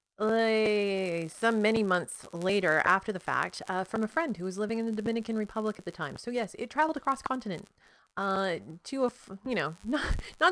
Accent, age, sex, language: American, 30-49, female, English